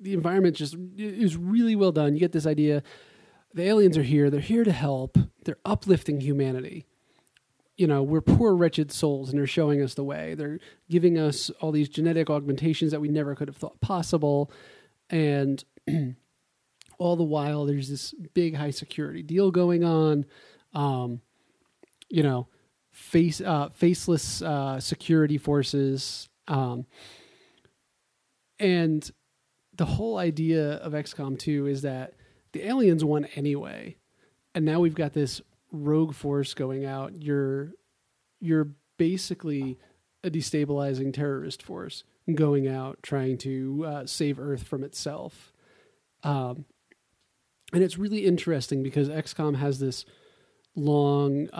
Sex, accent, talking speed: male, American, 135 wpm